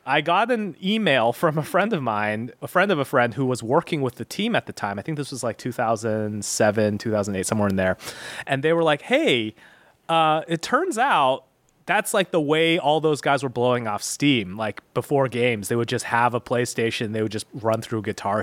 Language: English